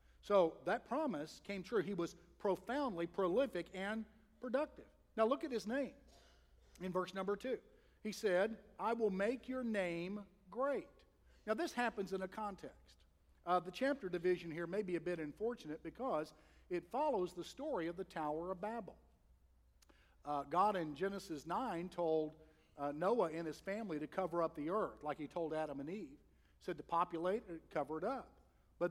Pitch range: 155-220 Hz